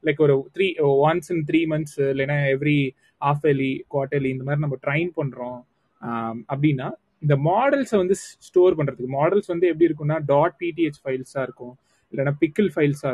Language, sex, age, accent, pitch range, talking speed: Tamil, male, 20-39, native, 135-170 Hz, 45 wpm